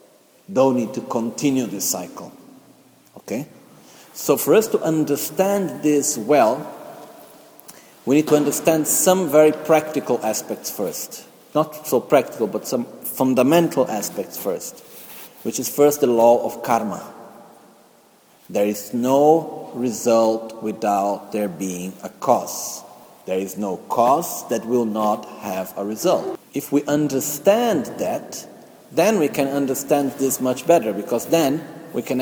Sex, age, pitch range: male, 50-69, 120-155 Hz